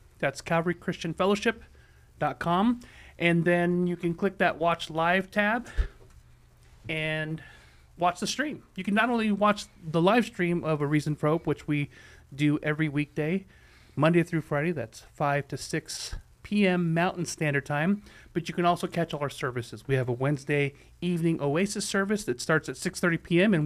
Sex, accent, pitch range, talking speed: male, American, 150-185 Hz, 165 wpm